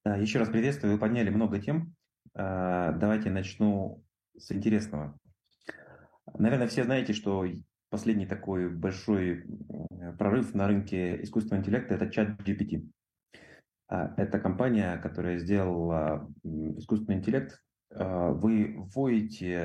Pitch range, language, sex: 90-110 Hz, Russian, male